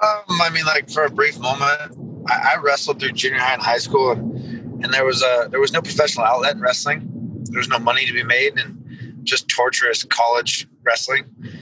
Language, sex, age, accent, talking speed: English, male, 30-49, American, 200 wpm